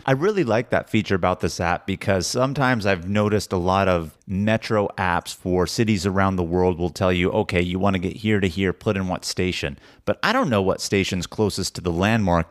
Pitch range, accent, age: 90-105 Hz, American, 30-49